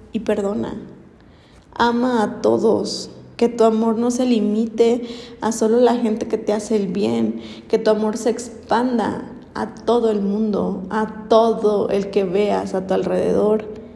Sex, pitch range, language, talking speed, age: female, 195-225 Hz, Spanish, 160 wpm, 20-39